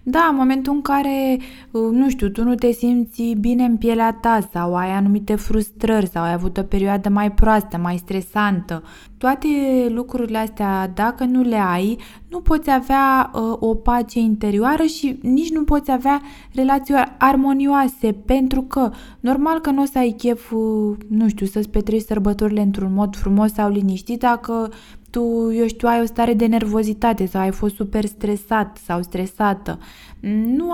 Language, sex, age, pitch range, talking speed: Romanian, female, 20-39, 210-260 Hz, 165 wpm